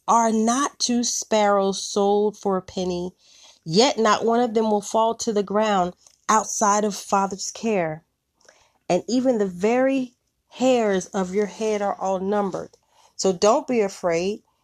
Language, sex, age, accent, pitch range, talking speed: English, female, 30-49, American, 185-240 Hz, 150 wpm